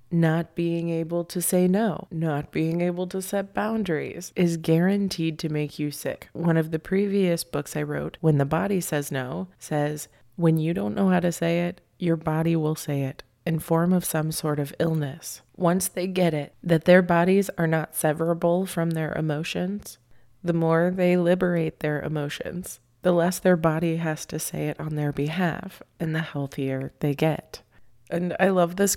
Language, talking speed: English, 185 wpm